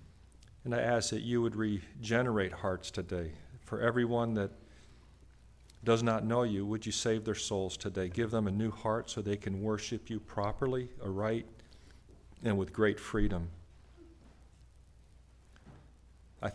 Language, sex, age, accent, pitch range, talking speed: English, male, 50-69, American, 85-115 Hz, 140 wpm